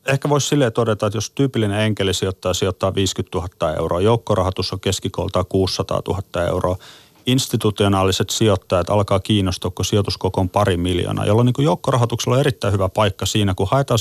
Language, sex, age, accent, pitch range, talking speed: Finnish, male, 30-49, native, 95-115 Hz, 165 wpm